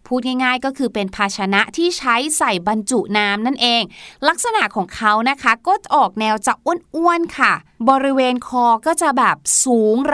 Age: 20-39